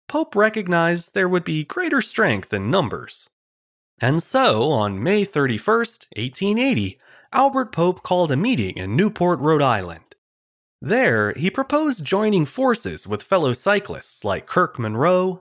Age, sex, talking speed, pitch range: 30-49, male, 135 wpm, 130-220 Hz